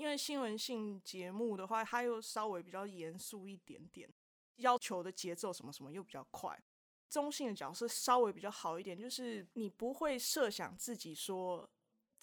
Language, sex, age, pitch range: Chinese, female, 20-39, 180-240 Hz